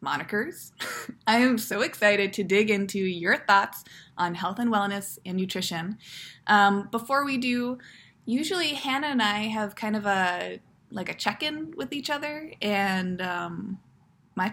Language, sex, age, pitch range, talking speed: English, female, 20-39, 185-240 Hz, 155 wpm